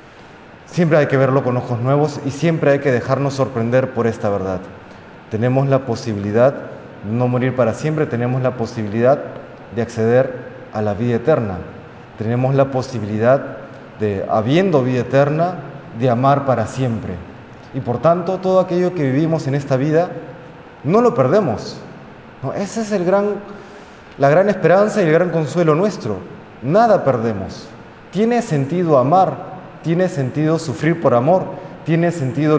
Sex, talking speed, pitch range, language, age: male, 150 wpm, 120-160 Hz, Spanish, 30-49